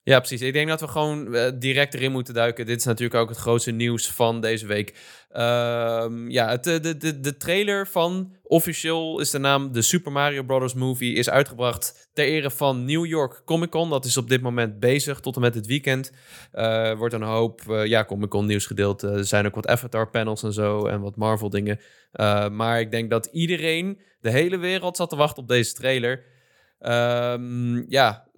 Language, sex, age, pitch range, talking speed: Dutch, male, 10-29, 120-150 Hz, 205 wpm